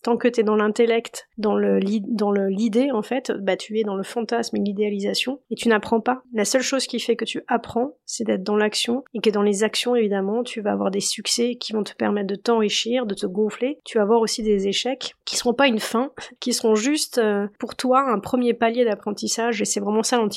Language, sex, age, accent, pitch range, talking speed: French, female, 30-49, French, 210-240 Hz, 250 wpm